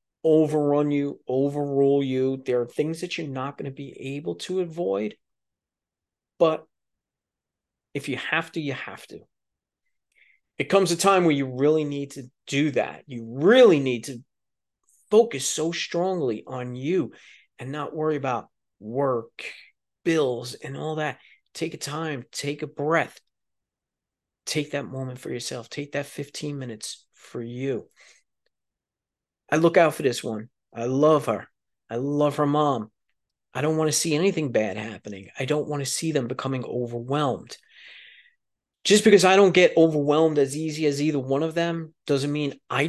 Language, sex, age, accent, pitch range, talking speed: English, male, 40-59, American, 130-155 Hz, 160 wpm